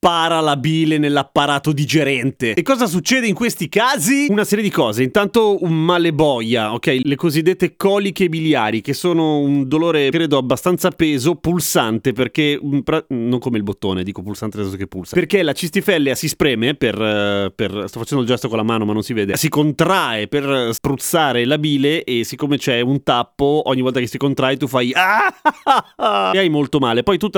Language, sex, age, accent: Italian, male, 30-49, native